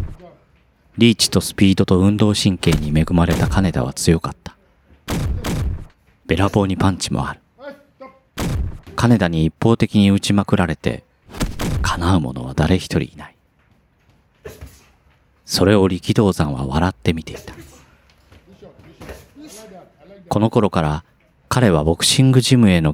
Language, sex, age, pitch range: Japanese, male, 40-59, 80-110 Hz